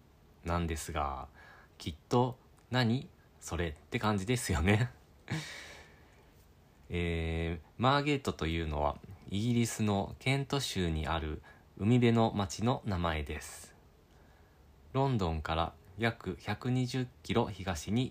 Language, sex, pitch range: Japanese, male, 80-115 Hz